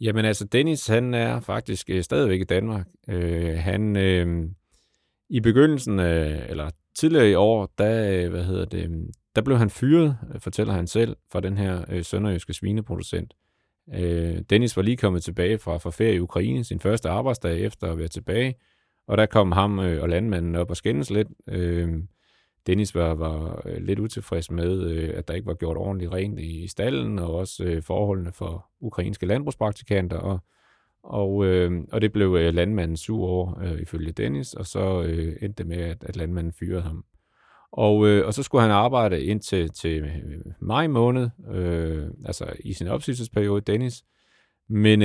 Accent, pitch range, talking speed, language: native, 85-110 Hz, 175 wpm, Danish